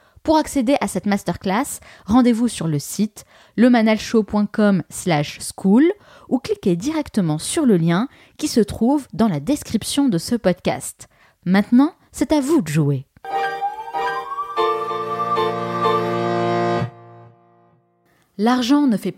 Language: French